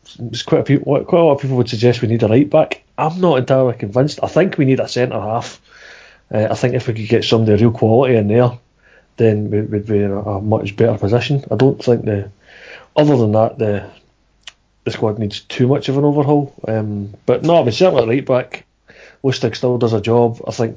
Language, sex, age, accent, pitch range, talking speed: English, male, 30-49, British, 110-130 Hz, 235 wpm